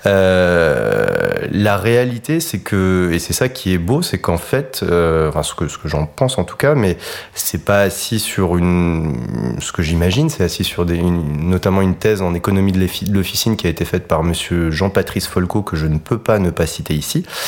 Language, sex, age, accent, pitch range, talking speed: French, male, 30-49, French, 85-110 Hz, 215 wpm